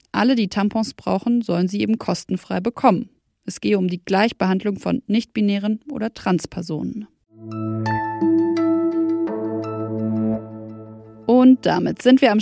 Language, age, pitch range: German, 20-39, 180-240 Hz